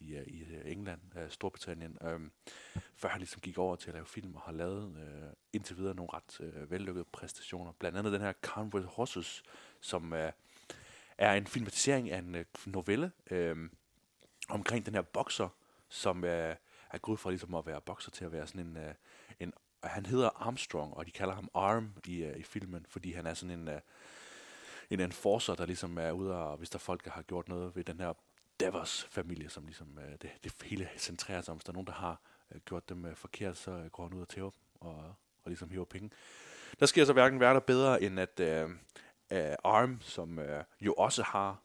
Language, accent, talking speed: Danish, native, 215 wpm